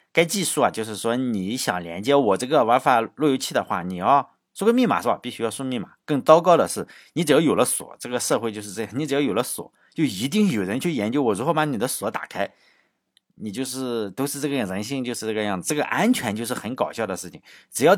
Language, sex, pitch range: Chinese, male, 110-160 Hz